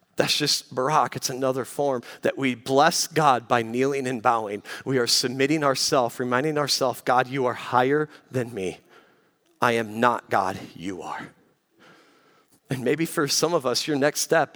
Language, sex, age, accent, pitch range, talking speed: English, male, 40-59, American, 130-165 Hz, 170 wpm